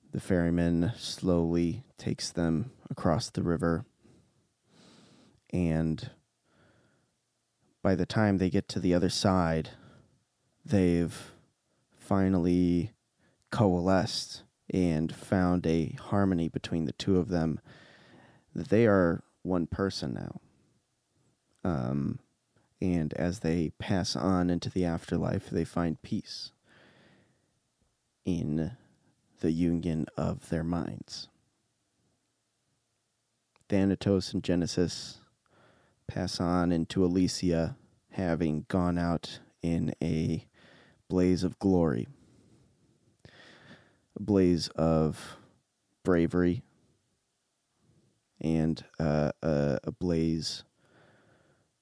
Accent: American